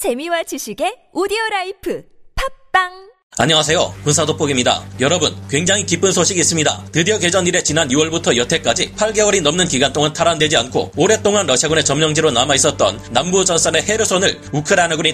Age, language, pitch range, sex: 30-49, Korean, 140-185 Hz, male